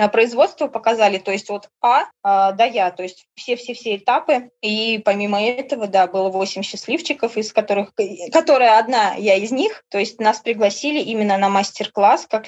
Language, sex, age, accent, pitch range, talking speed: Russian, female, 20-39, native, 195-250 Hz, 175 wpm